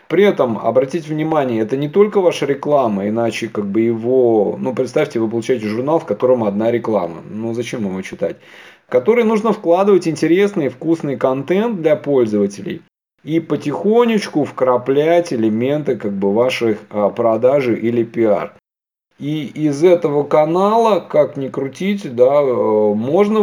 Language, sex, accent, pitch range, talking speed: Russian, male, native, 115-160 Hz, 135 wpm